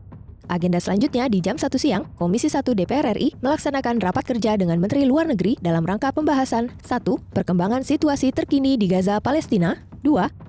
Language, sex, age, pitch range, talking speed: Indonesian, female, 20-39, 190-265 Hz, 160 wpm